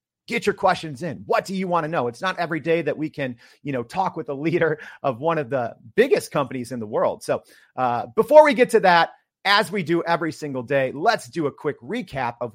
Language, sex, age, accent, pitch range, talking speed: English, male, 40-59, American, 140-190 Hz, 245 wpm